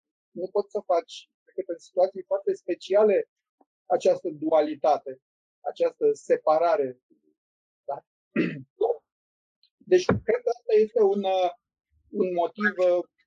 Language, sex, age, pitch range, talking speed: Romanian, male, 30-49, 165-230 Hz, 110 wpm